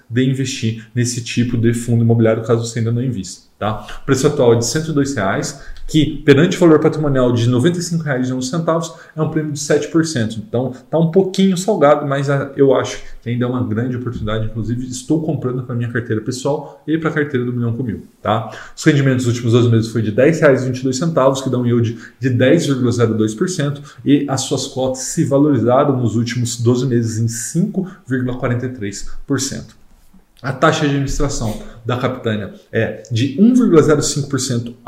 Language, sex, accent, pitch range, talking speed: Portuguese, male, Brazilian, 115-145 Hz, 170 wpm